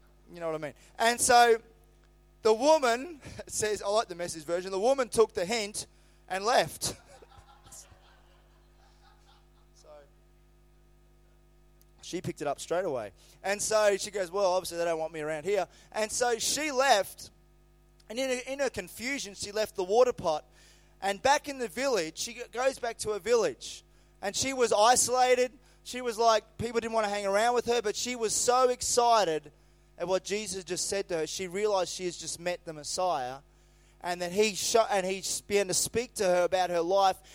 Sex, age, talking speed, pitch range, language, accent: male, 20-39, 185 wpm, 180-245 Hz, English, Australian